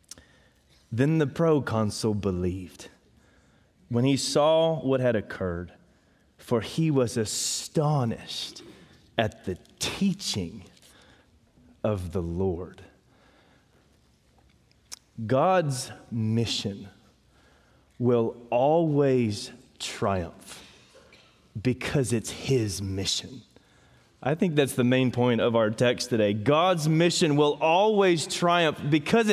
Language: English